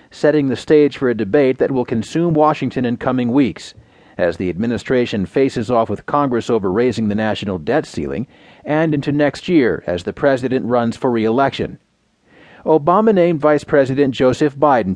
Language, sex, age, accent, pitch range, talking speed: English, male, 40-59, American, 115-150 Hz, 170 wpm